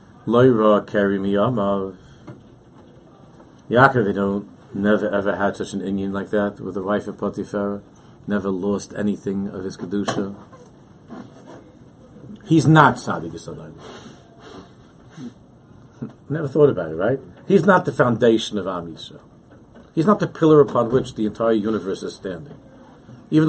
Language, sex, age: English, male, 50-69